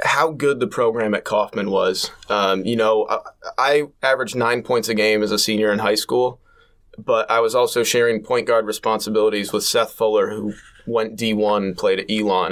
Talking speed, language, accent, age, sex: 195 wpm, English, American, 20-39, male